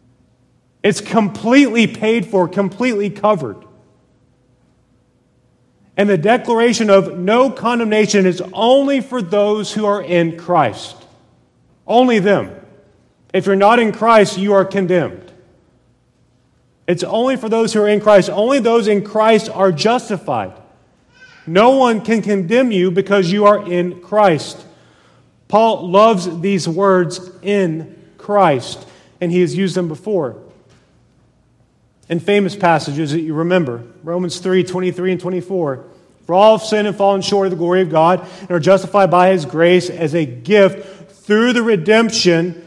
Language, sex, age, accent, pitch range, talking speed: English, male, 40-59, American, 175-210 Hz, 140 wpm